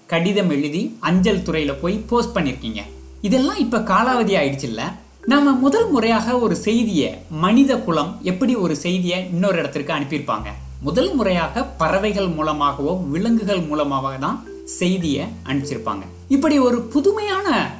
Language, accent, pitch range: Tamil, native, 155-245 Hz